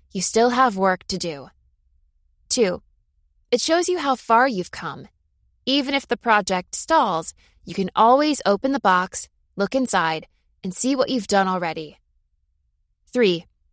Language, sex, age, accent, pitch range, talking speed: English, female, 20-39, American, 170-245 Hz, 150 wpm